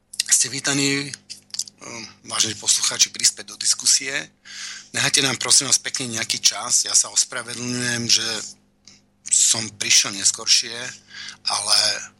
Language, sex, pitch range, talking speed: Slovak, male, 105-120 Hz, 105 wpm